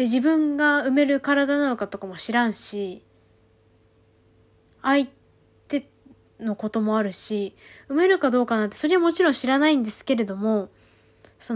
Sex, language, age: female, Japanese, 20-39